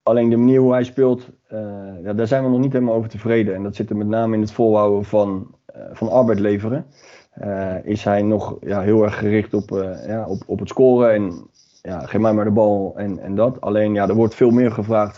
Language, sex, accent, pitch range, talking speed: English, male, Dutch, 105-125 Hz, 220 wpm